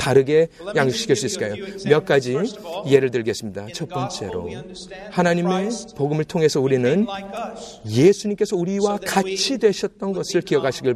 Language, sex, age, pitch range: Korean, male, 40-59, 170-220 Hz